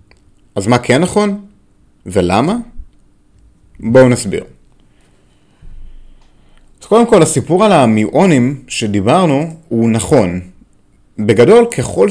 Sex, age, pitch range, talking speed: male, 30-49, 105-160 Hz, 85 wpm